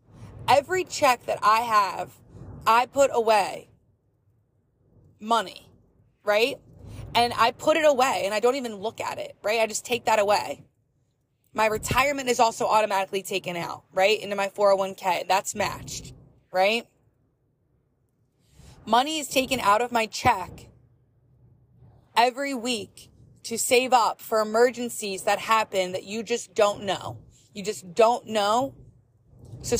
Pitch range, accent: 145-235 Hz, American